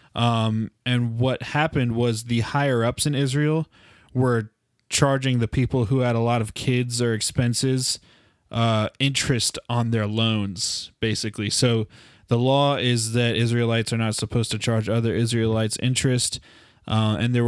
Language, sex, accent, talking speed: English, male, American, 155 wpm